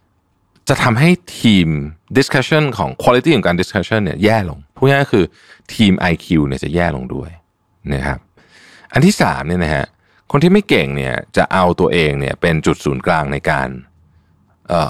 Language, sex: Thai, male